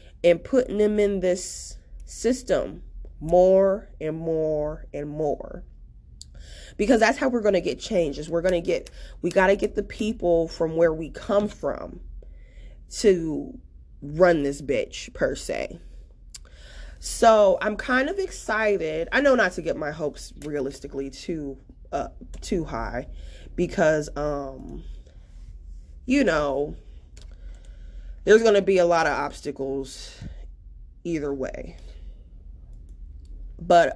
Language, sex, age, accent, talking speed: English, female, 20-39, American, 125 wpm